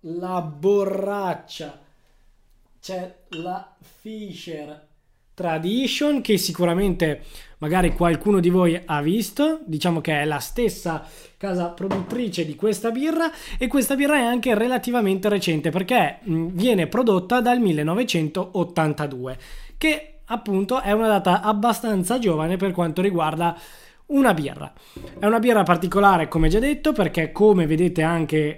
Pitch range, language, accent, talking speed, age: 160-215 Hz, Italian, native, 125 wpm, 20-39